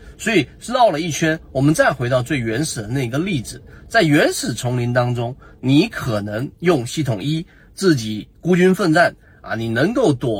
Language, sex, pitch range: Chinese, male, 120-160 Hz